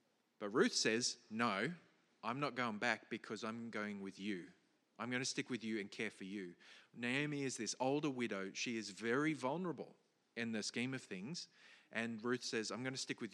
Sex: male